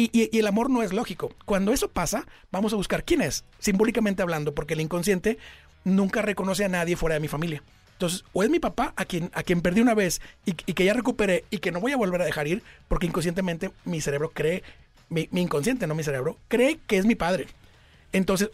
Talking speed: 235 wpm